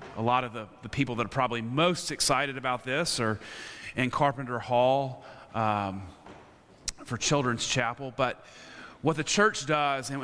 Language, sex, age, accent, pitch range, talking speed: English, male, 30-49, American, 120-145 Hz, 160 wpm